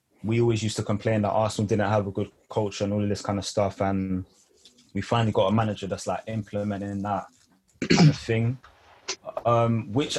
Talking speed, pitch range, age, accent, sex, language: 200 wpm, 100-120 Hz, 20-39, British, male, English